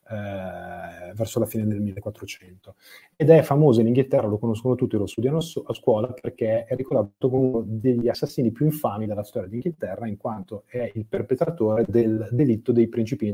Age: 30-49